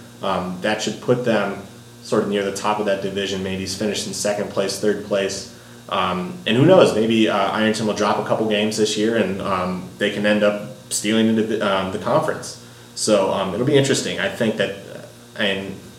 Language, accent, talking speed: English, American, 205 wpm